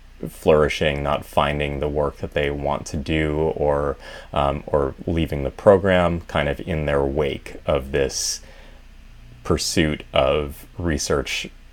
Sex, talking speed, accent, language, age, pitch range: male, 135 wpm, American, English, 30-49, 75-85 Hz